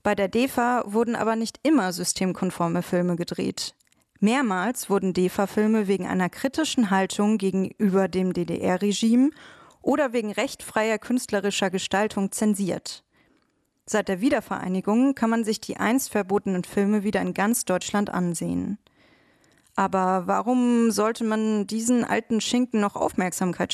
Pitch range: 190-235 Hz